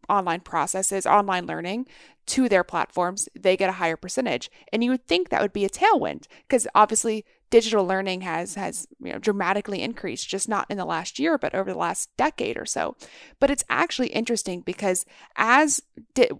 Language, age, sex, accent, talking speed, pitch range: English, 30-49, female, American, 185 wpm, 190-240 Hz